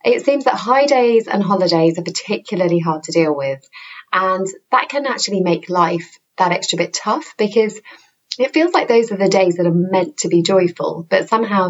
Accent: British